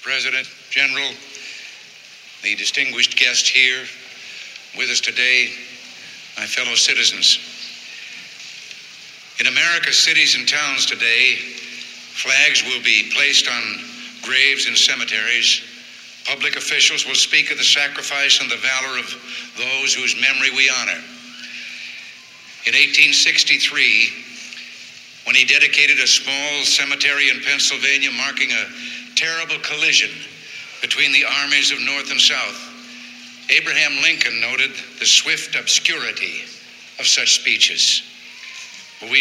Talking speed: 110 wpm